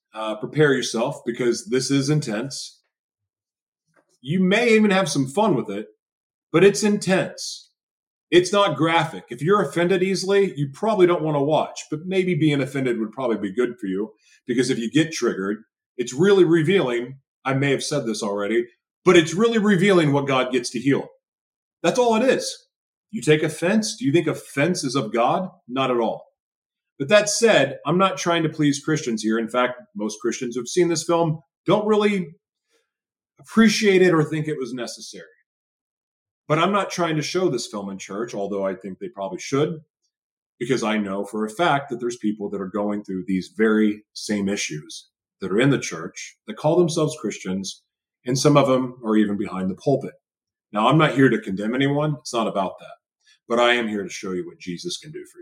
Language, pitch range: English, 110-180 Hz